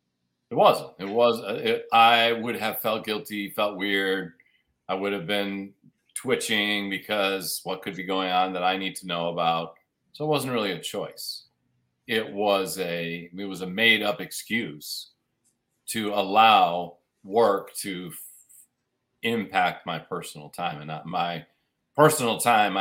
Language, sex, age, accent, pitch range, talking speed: English, male, 40-59, American, 95-120 Hz, 150 wpm